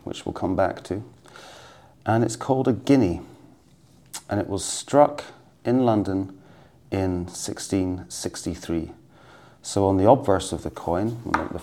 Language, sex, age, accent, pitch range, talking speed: English, male, 40-59, British, 85-110 Hz, 135 wpm